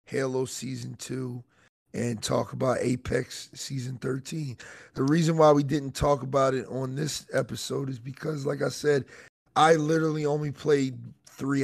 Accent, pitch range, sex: American, 115-140 Hz, male